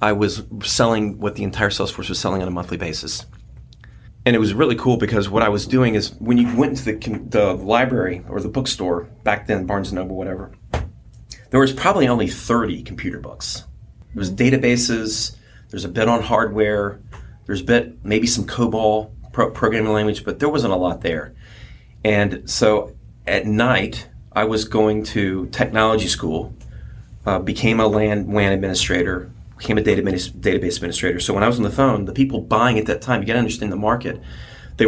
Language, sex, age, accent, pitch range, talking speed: English, male, 30-49, American, 95-115 Hz, 190 wpm